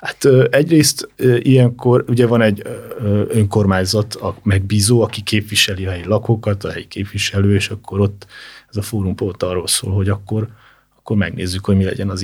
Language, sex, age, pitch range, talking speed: Hungarian, male, 30-49, 95-115 Hz, 160 wpm